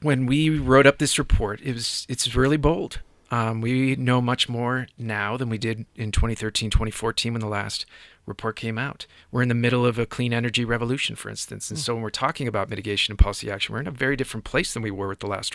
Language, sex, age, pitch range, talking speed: English, male, 40-59, 110-130 Hz, 240 wpm